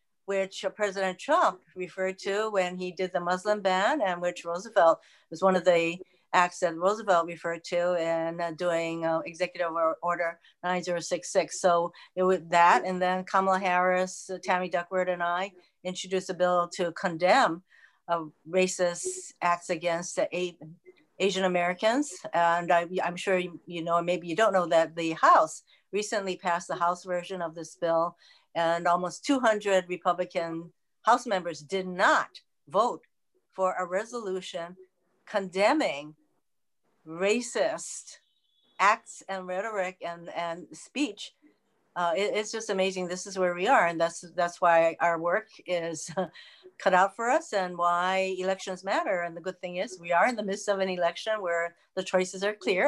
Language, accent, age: English, American, 60-79